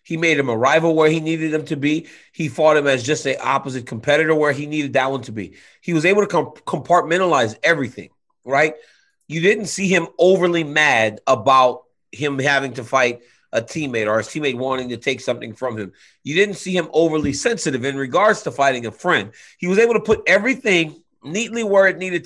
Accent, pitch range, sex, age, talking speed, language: American, 145-185 Hz, male, 30-49, 210 wpm, English